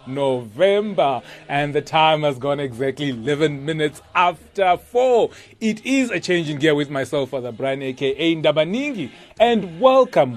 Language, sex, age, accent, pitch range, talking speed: English, male, 30-49, South African, 130-175 Hz, 145 wpm